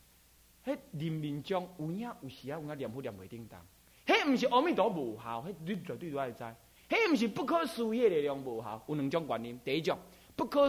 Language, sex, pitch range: Chinese, male, 115-190 Hz